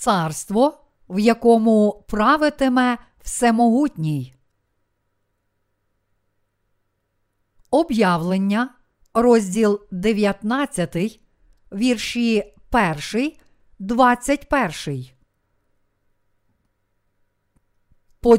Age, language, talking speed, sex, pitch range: 50-69, Ukrainian, 40 wpm, female, 175-255 Hz